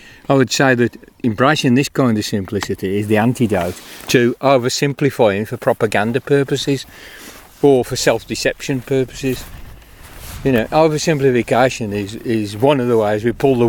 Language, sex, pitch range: English, male, 110-130 Hz